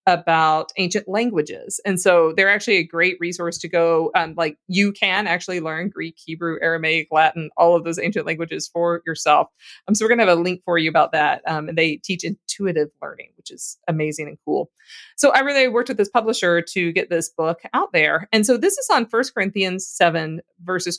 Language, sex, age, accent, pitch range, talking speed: English, female, 30-49, American, 170-220 Hz, 210 wpm